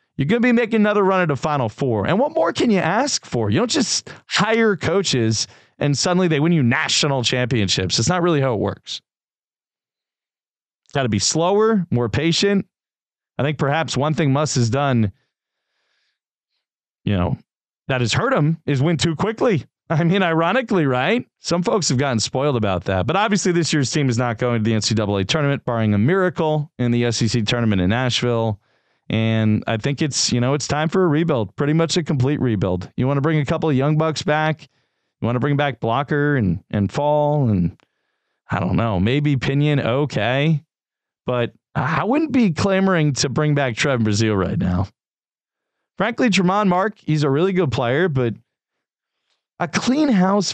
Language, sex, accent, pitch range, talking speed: English, male, American, 120-175 Hz, 185 wpm